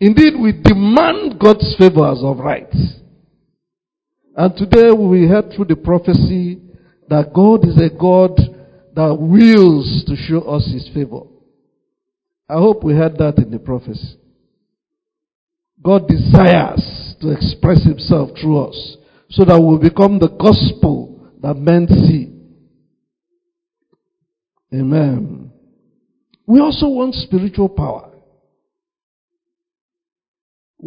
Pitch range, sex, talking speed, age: 150-235 Hz, male, 115 wpm, 50-69